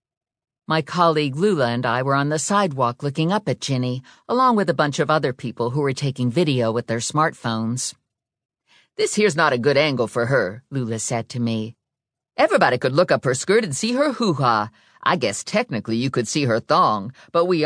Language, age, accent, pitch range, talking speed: English, 50-69, American, 125-175 Hz, 200 wpm